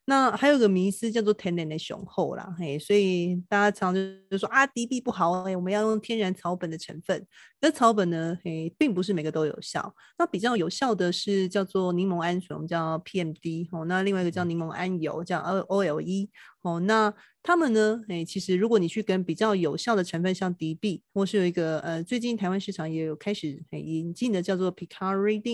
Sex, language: female, Chinese